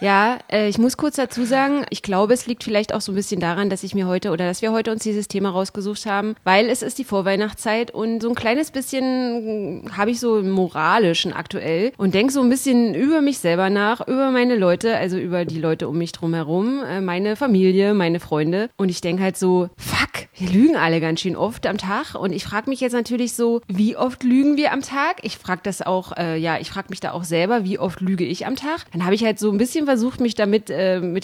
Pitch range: 185-240 Hz